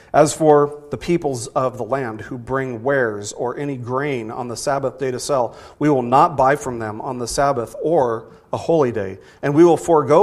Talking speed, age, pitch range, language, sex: 210 wpm, 40-59, 115-145 Hz, English, male